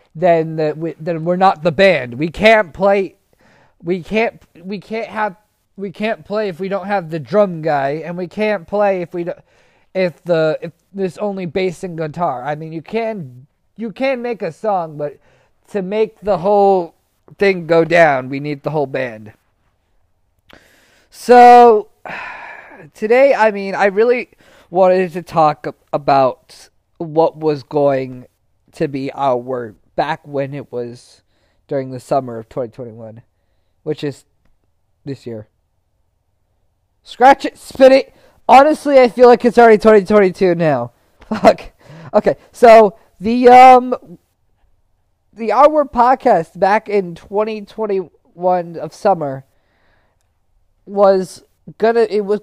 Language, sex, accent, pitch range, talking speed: English, male, American, 130-210 Hz, 140 wpm